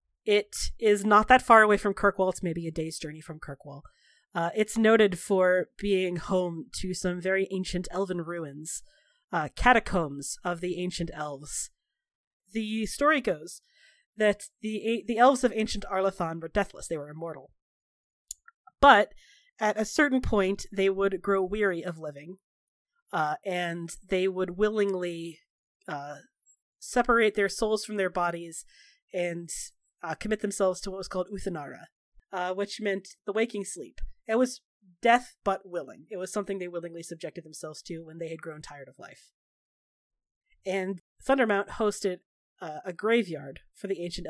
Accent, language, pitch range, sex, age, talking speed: American, English, 170-215 Hz, female, 30-49, 155 wpm